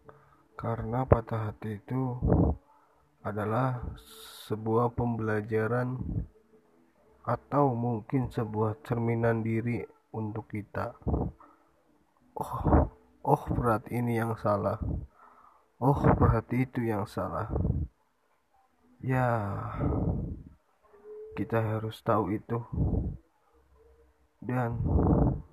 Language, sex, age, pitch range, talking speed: Indonesian, male, 20-39, 110-125 Hz, 75 wpm